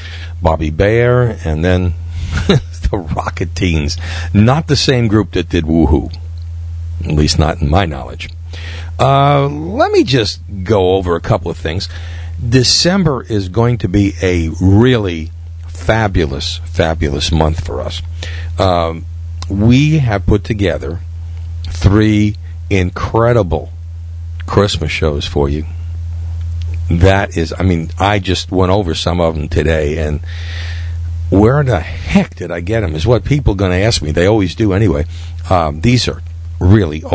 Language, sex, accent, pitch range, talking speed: English, male, American, 85-105 Hz, 145 wpm